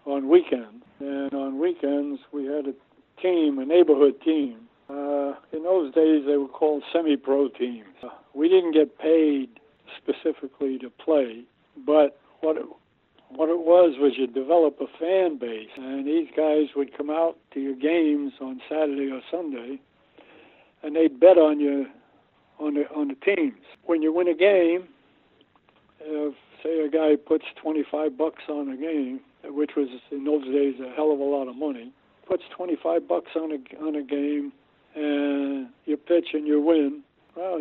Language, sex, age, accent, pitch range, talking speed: English, male, 60-79, American, 140-170 Hz, 170 wpm